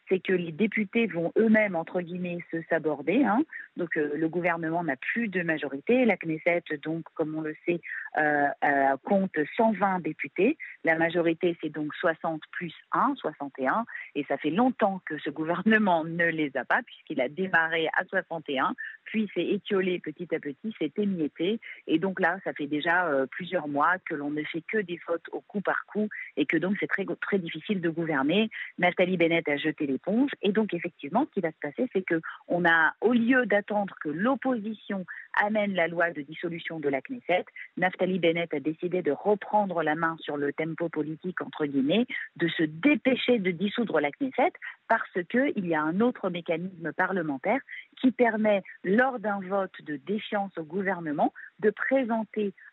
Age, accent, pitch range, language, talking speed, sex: 40-59, French, 155-210 Hz, French, 185 wpm, female